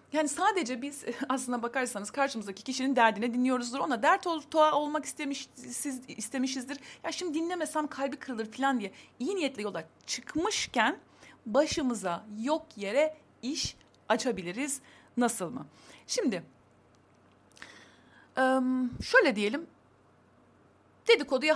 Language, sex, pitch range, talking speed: Turkish, female, 220-290 Hz, 105 wpm